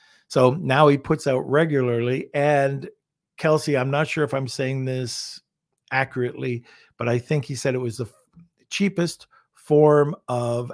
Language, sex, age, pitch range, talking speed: English, male, 50-69, 125-145 Hz, 155 wpm